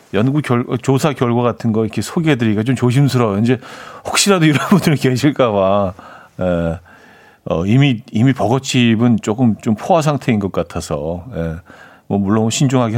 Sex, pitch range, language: male, 110-140 Hz, Korean